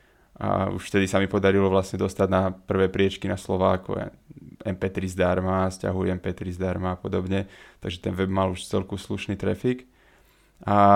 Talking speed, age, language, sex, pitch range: 160 wpm, 20-39, Slovak, male, 95-100 Hz